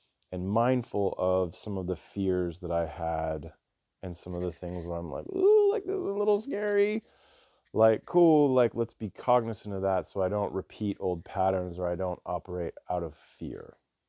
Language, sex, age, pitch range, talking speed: English, male, 30-49, 90-115 Hz, 190 wpm